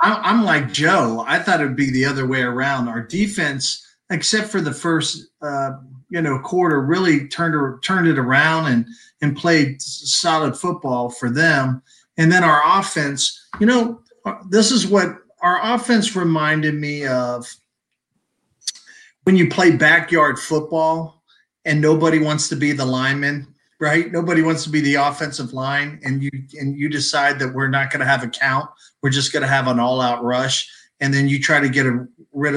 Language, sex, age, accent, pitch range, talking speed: English, male, 40-59, American, 130-160 Hz, 175 wpm